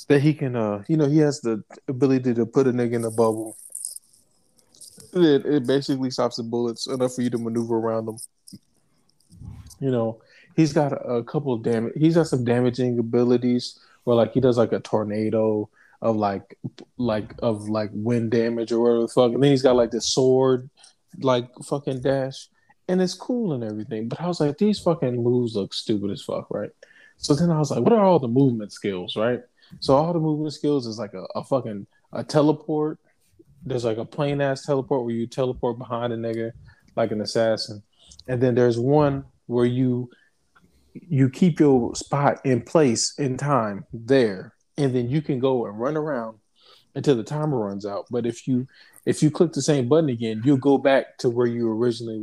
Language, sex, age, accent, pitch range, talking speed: English, male, 20-39, American, 115-140 Hz, 200 wpm